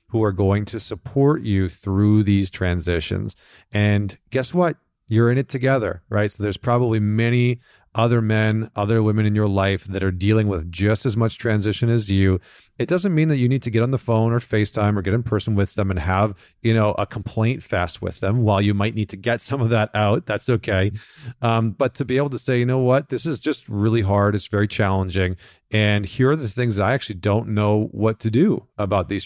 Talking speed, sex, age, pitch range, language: 230 wpm, male, 40-59, 95-115 Hz, English